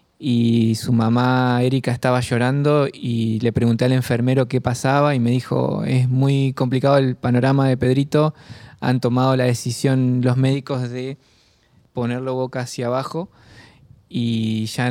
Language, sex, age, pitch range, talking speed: Spanish, male, 20-39, 120-135 Hz, 145 wpm